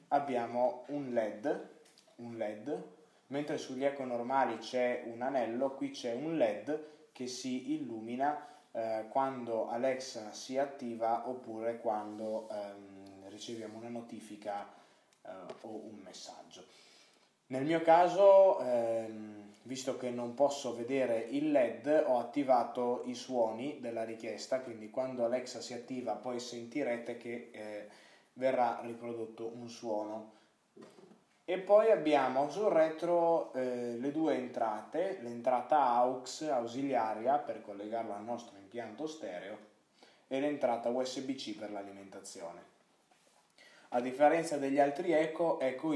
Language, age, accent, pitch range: Italian, 20-39, native, 115-140 Hz